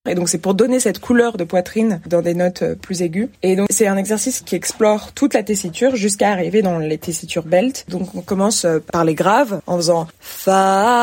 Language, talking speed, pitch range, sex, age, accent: French, 210 wpm, 175-225 Hz, female, 20-39, French